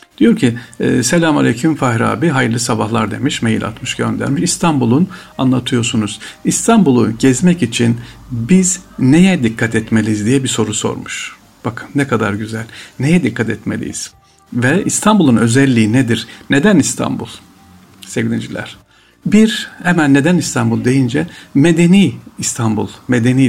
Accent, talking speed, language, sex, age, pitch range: native, 120 wpm, Turkish, male, 50-69, 110-150 Hz